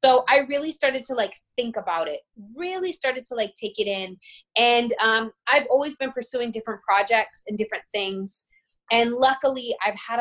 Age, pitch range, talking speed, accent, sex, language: 20-39, 190-240 Hz, 180 wpm, American, female, English